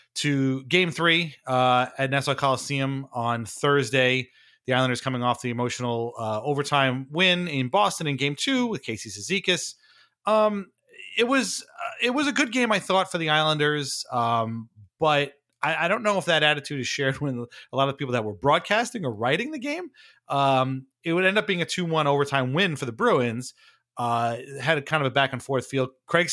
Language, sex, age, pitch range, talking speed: English, male, 30-49, 120-160 Hz, 205 wpm